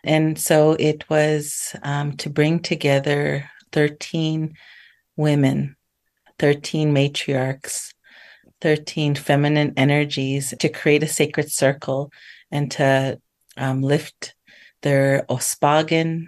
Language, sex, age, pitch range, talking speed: English, female, 30-49, 140-155 Hz, 95 wpm